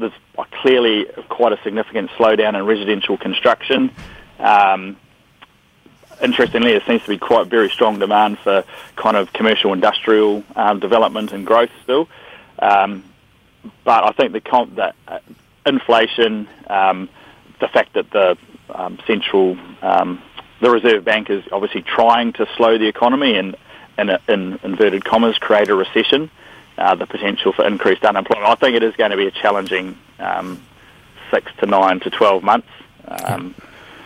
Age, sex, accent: 30-49, male, Australian